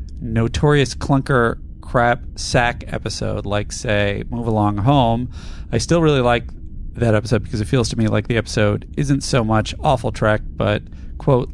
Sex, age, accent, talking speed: male, 40-59, American, 160 wpm